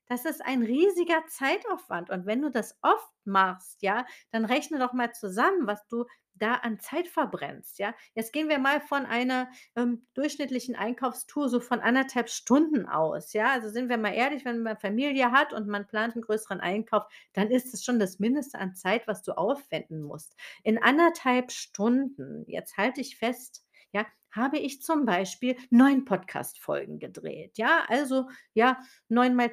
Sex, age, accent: female, 40-59, German